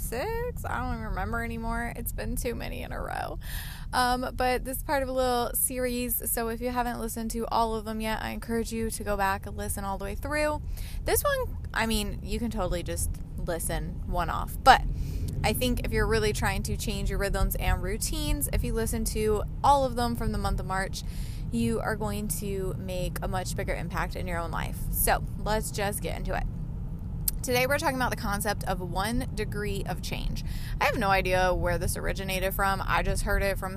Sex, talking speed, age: female, 220 wpm, 20-39